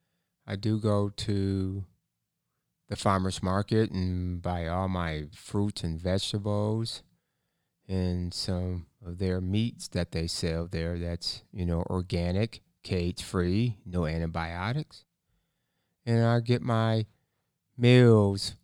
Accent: American